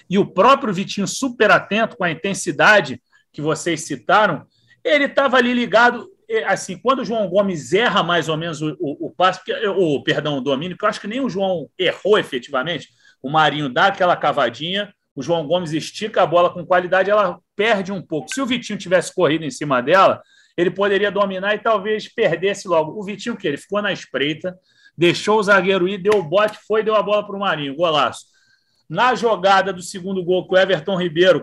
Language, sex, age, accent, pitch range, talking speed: Portuguese, male, 40-59, Brazilian, 175-215 Hz, 200 wpm